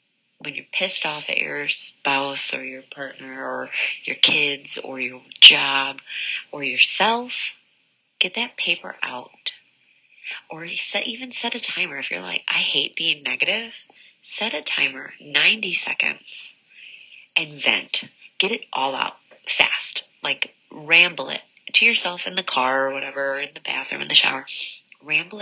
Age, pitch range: 30-49, 140-205 Hz